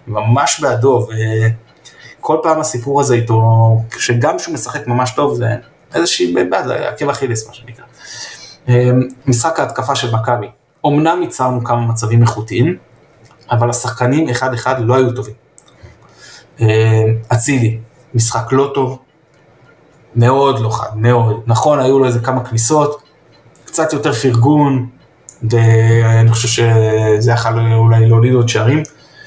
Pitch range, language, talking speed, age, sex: 115-140 Hz, Hebrew, 125 wpm, 20-39, male